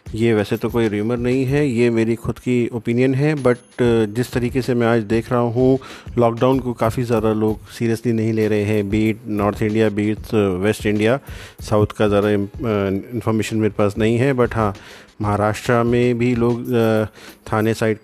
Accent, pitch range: native, 105-120 Hz